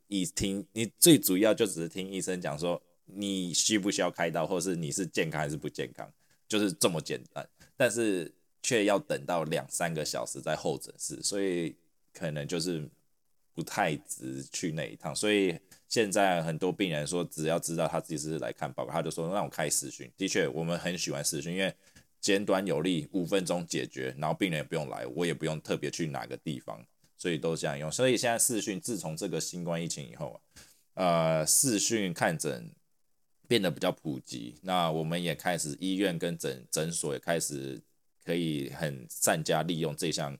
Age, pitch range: 20-39, 75-90 Hz